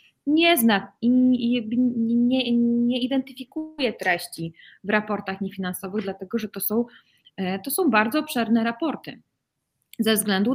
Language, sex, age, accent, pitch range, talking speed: Polish, female, 20-39, native, 195-250 Hz, 125 wpm